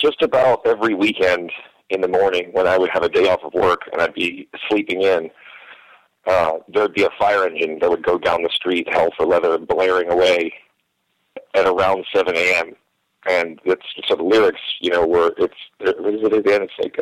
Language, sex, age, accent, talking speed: English, male, 40-59, American, 205 wpm